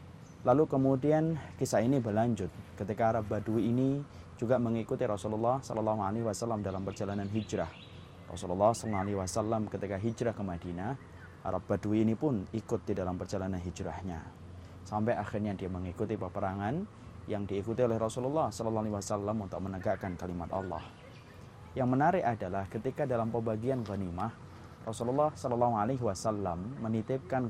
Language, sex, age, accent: Indonesian, male, 20-39, native